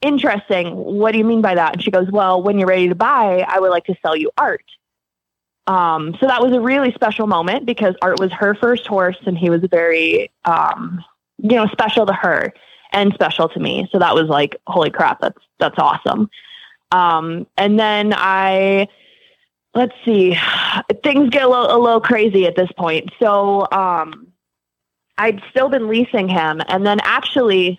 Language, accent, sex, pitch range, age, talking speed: English, American, female, 170-220 Hz, 20-39, 185 wpm